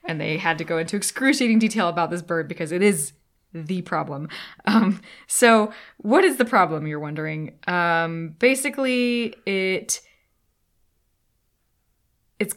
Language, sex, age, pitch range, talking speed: English, female, 20-39, 165-230 Hz, 135 wpm